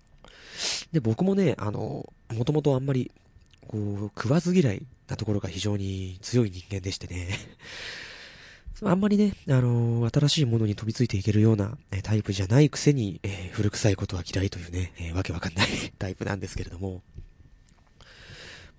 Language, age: Japanese, 20-39